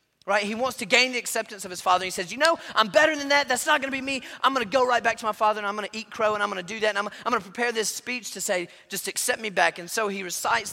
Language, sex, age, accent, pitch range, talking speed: English, male, 30-49, American, 170-225 Hz, 350 wpm